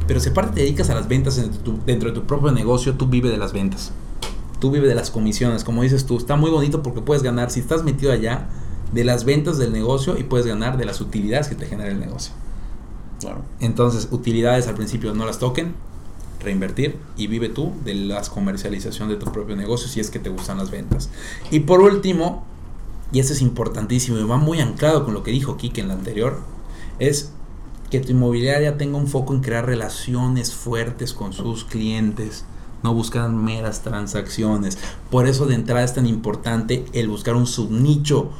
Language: Spanish